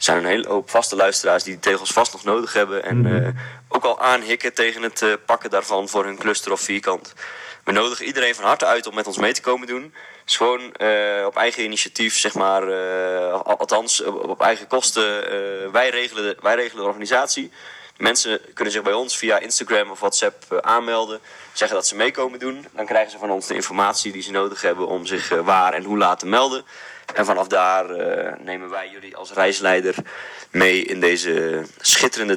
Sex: male